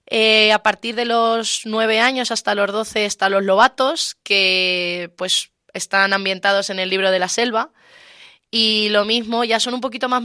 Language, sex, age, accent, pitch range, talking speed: Spanish, female, 20-39, Spanish, 195-230 Hz, 180 wpm